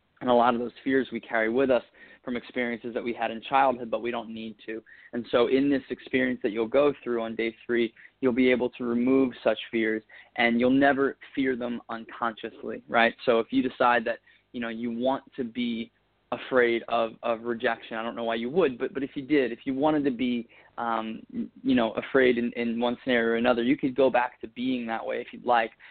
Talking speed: 230 wpm